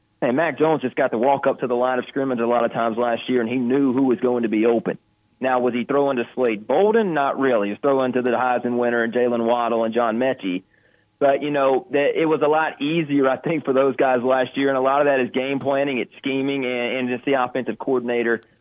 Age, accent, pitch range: 30-49, American, 115-140 Hz